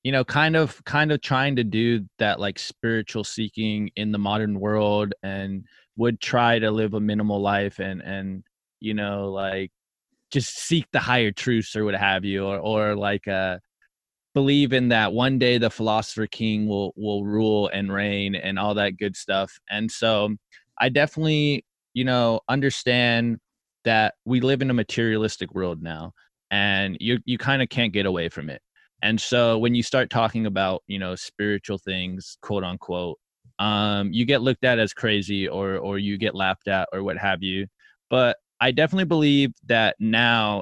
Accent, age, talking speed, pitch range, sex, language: American, 20-39, 180 wpm, 100-120 Hz, male, English